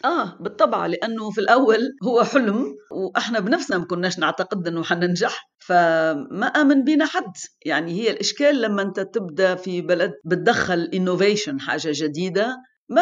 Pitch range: 175-240 Hz